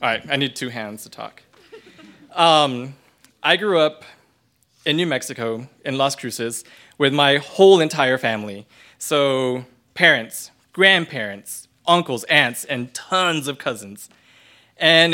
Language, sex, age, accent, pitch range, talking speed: English, male, 20-39, American, 120-160 Hz, 130 wpm